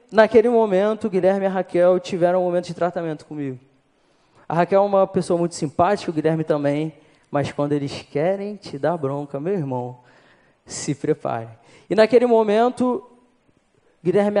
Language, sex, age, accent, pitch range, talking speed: Portuguese, male, 20-39, Brazilian, 150-215 Hz, 150 wpm